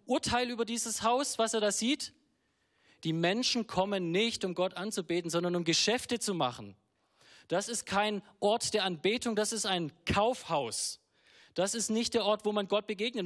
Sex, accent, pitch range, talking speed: male, German, 185-235 Hz, 175 wpm